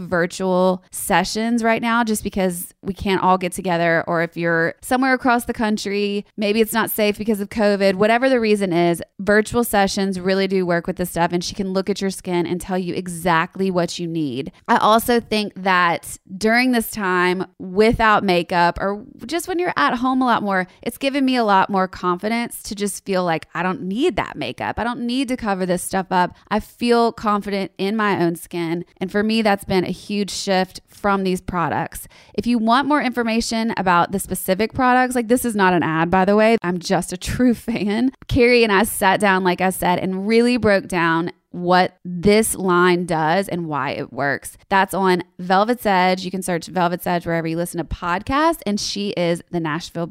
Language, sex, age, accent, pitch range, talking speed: English, female, 20-39, American, 180-230 Hz, 205 wpm